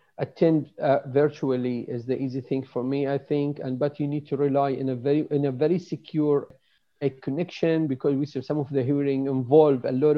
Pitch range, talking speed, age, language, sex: 135-155 Hz, 210 wpm, 50-69, English, male